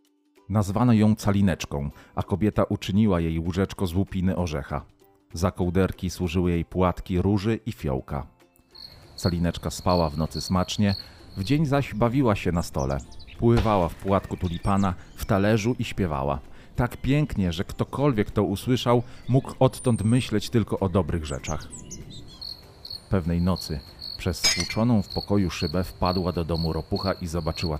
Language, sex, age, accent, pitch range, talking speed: Polish, male, 40-59, native, 85-105 Hz, 140 wpm